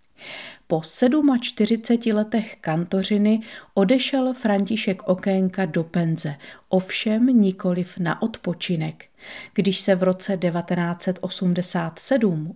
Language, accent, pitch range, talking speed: Czech, native, 175-215 Hz, 85 wpm